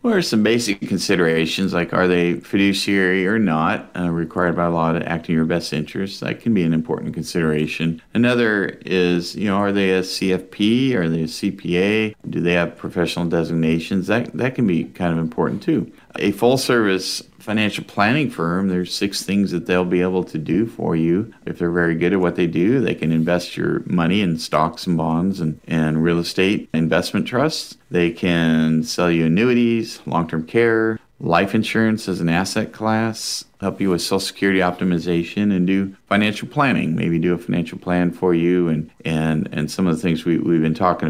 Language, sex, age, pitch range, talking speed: English, male, 40-59, 85-100 Hz, 190 wpm